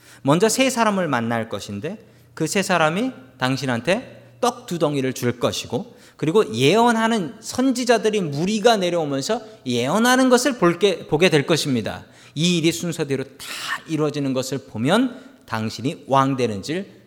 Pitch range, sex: 135-215 Hz, male